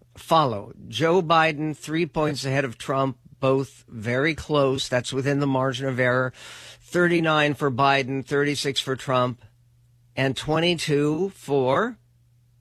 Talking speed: 135 wpm